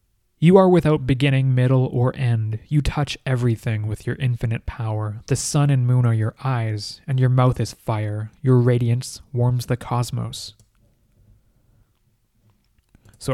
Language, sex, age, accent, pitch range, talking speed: English, male, 20-39, American, 115-145 Hz, 145 wpm